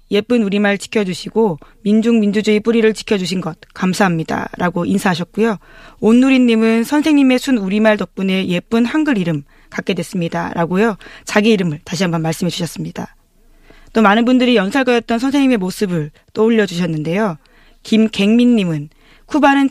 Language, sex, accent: Korean, female, native